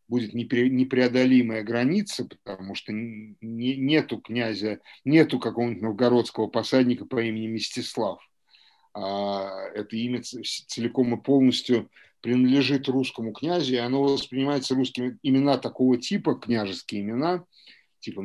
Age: 50-69